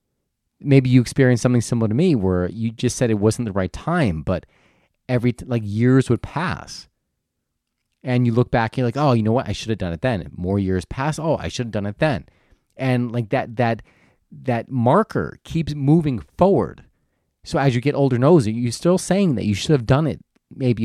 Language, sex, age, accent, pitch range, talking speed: English, male, 30-49, American, 105-140 Hz, 220 wpm